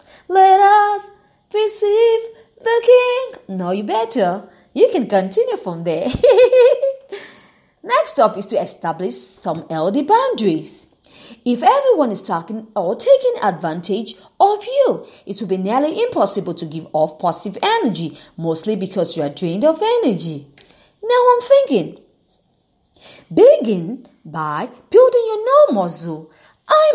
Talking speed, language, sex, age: 125 wpm, English, female, 30-49